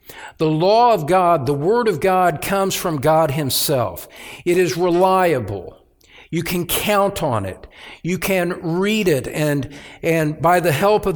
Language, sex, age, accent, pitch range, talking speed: English, male, 60-79, American, 130-180 Hz, 160 wpm